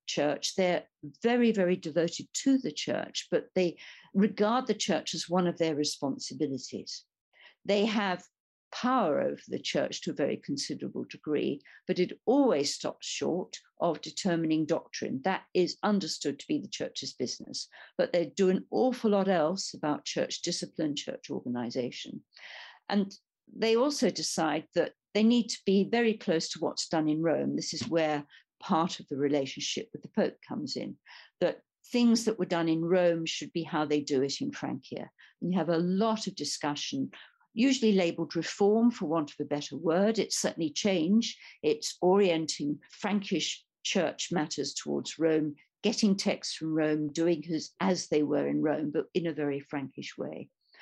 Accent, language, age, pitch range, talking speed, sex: British, English, 50-69, 155-205 Hz, 170 wpm, female